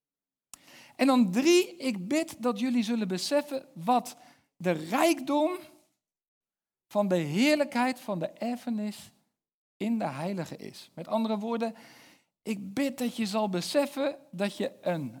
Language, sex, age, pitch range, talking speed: Dutch, male, 60-79, 180-245 Hz, 135 wpm